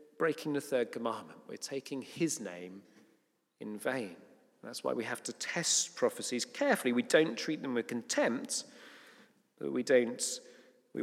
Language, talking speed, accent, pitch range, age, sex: English, 150 wpm, British, 110-155 Hz, 40-59, male